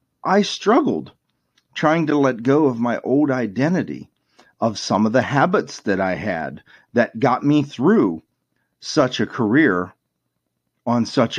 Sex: male